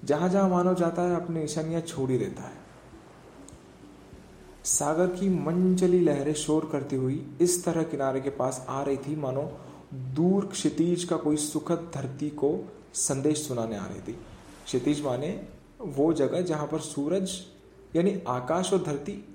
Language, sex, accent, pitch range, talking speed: Hindi, male, native, 130-175 Hz, 155 wpm